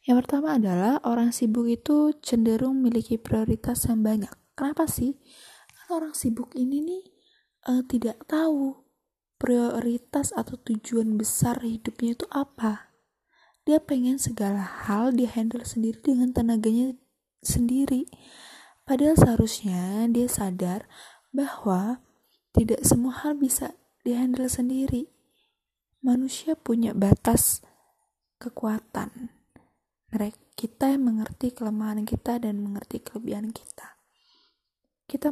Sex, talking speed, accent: female, 105 wpm, native